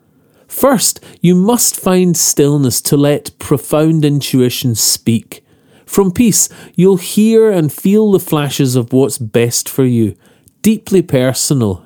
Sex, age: male, 40-59